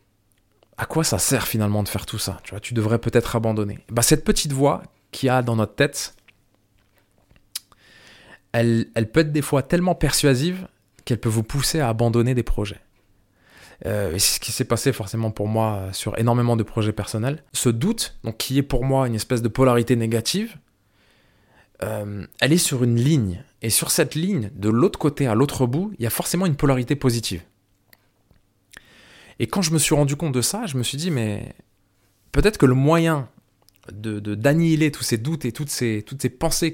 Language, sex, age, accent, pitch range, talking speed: French, male, 20-39, French, 105-140 Hz, 200 wpm